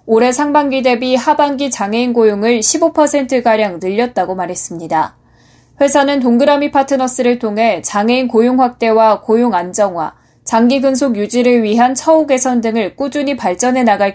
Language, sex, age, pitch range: Korean, female, 20-39, 210-270 Hz